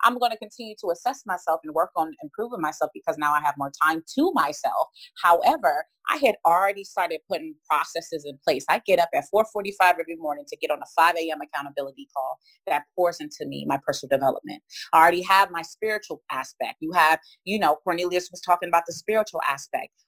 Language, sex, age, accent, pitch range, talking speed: English, female, 30-49, American, 150-195 Hz, 205 wpm